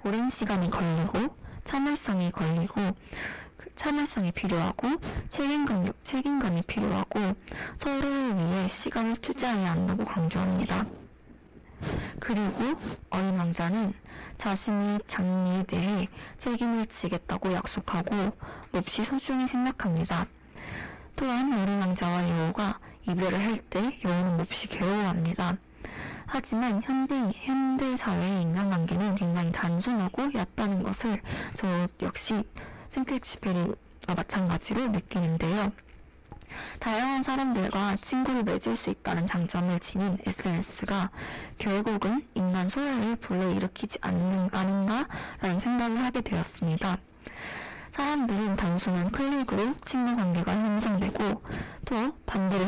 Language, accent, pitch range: Korean, native, 185-245 Hz